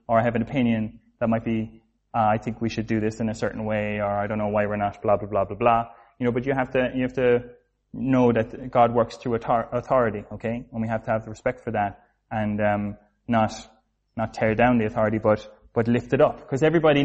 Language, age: English, 20-39